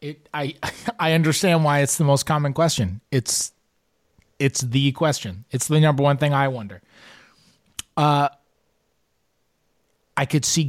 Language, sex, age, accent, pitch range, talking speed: English, male, 30-49, American, 120-150 Hz, 140 wpm